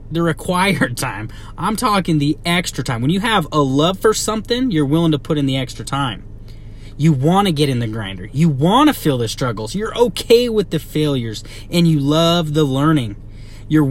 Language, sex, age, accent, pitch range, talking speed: English, male, 30-49, American, 115-170 Hz, 205 wpm